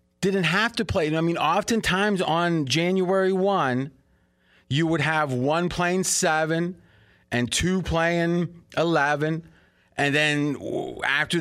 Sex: male